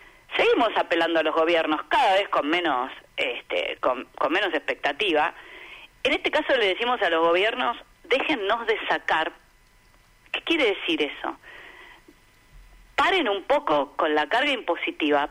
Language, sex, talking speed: Spanish, female, 140 wpm